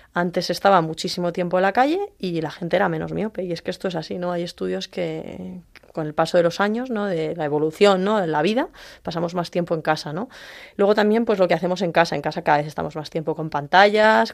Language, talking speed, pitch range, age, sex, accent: Spanish, 250 wpm, 165-205 Hz, 20-39, female, Spanish